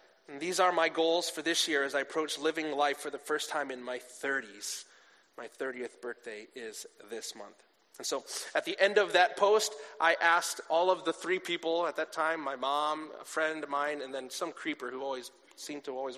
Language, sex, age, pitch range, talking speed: English, male, 30-49, 155-250 Hz, 220 wpm